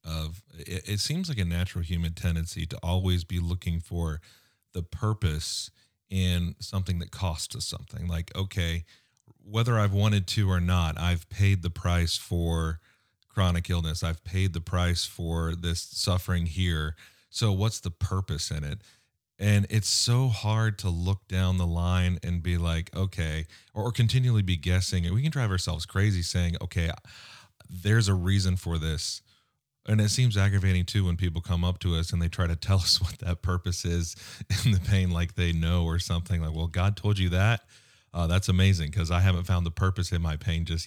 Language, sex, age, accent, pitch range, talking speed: English, male, 30-49, American, 85-100 Hz, 185 wpm